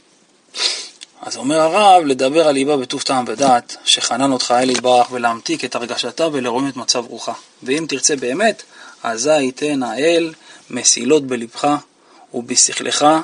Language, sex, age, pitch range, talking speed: Hebrew, male, 20-39, 125-155 Hz, 130 wpm